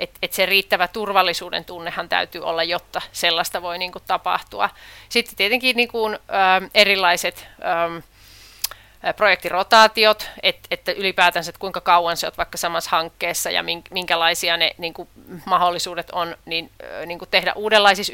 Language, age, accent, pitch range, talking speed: Finnish, 30-49, native, 175-205 Hz, 150 wpm